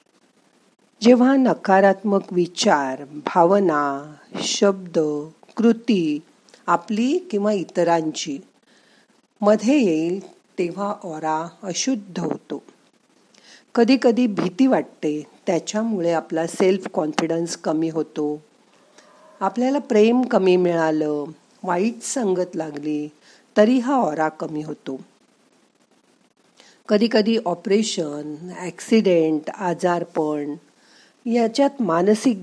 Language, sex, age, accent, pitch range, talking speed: Marathi, female, 50-69, native, 160-225 Hz, 75 wpm